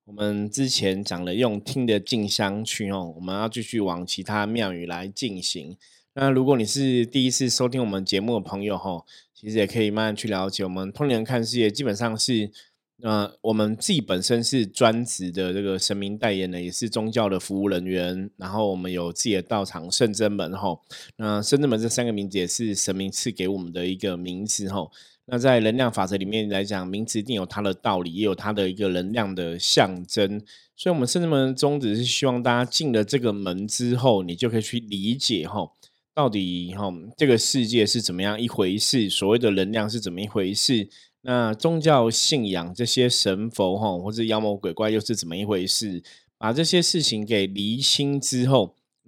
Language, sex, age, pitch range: Chinese, male, 20-39, 95-120 Hz